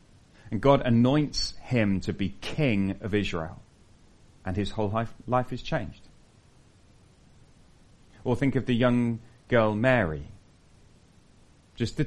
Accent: British